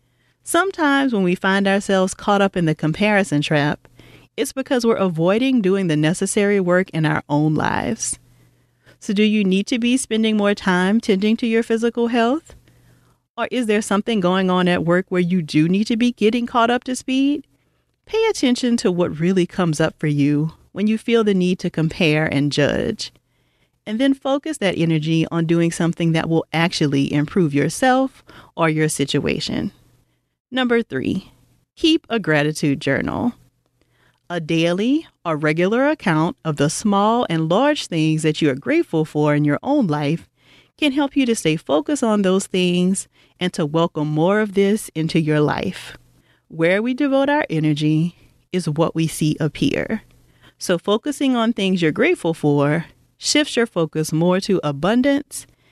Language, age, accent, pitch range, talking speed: English, 40-59, American, 155-230 Hz, 170 wpm